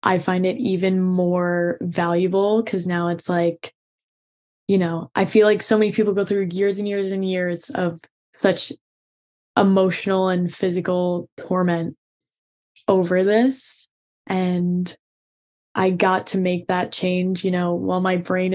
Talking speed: 145 wpm